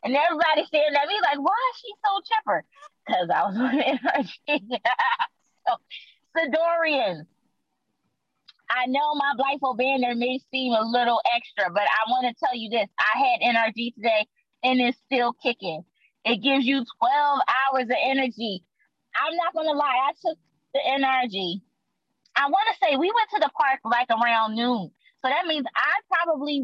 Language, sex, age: English, female, 20-39